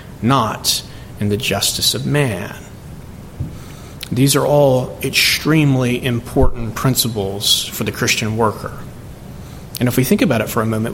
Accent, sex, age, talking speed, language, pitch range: American, male, 40-59, 135 wpm, English, 130-165 Hz